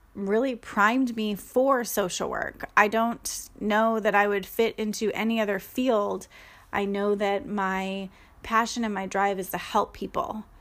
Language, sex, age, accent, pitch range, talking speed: English, female, 20-39, American, 200-230 Hz, 165 wpm